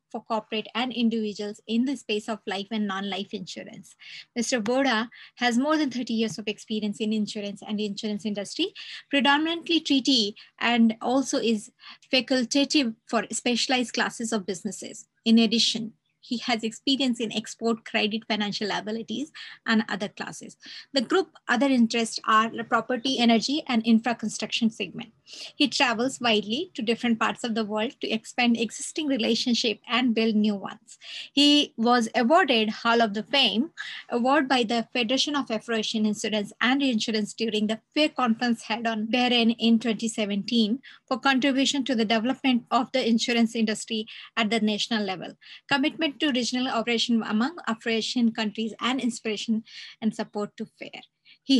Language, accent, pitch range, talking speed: English, Indian, 220-255 Hz, 150 wpm